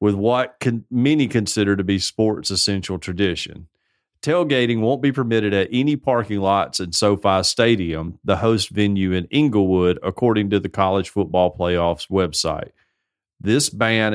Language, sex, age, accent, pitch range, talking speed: English, male, 40-59, American, 95-120 Hz, 145 wpm